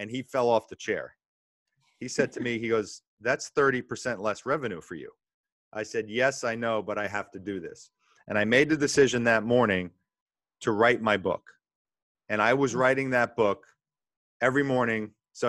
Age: 40-59